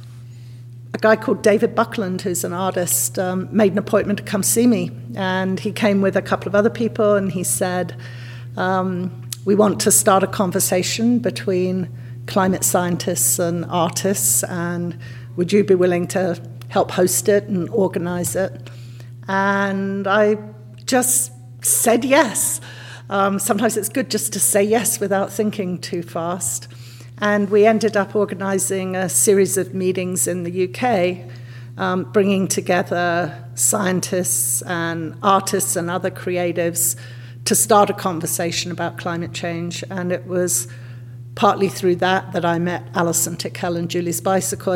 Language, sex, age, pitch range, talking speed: English, female, 50-69, 125-195 Hz, 150 wpm